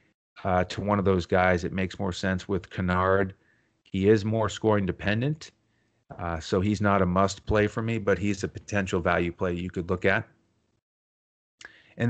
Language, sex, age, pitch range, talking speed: English, male, 30-49, 95-110 Hz, 185 wpm